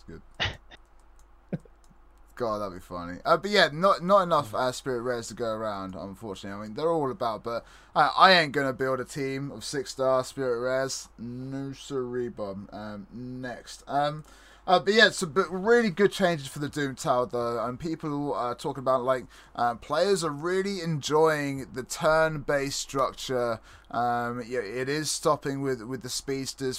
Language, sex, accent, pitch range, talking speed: English, male, British, 125-165 Hz, 175 wpm